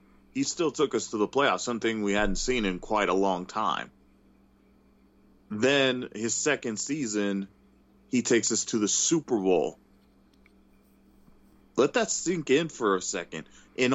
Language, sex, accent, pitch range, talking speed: English, male, American, 95-115 Hz, 150 wpm